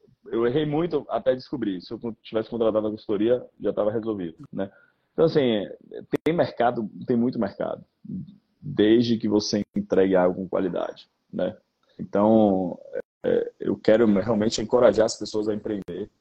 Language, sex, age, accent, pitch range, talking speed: Portuguese, male, 20-39, Brazilian, 100-115 Hz, 150 wpm